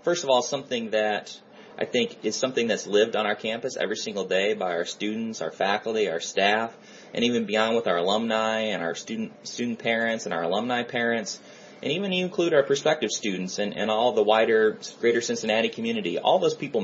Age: 30-49